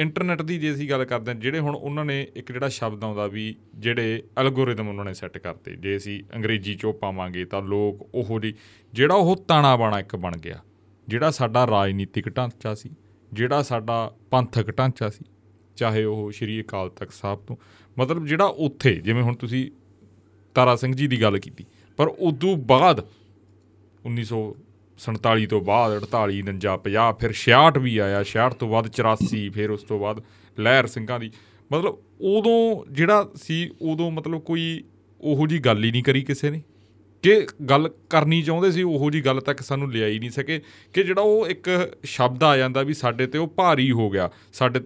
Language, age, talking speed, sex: Punjabi, 30-49, 170 wpm, male